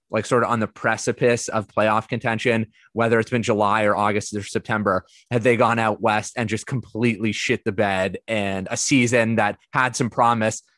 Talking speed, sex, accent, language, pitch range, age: 195 wpm, male, American, English, 105-135 Hz, 20-39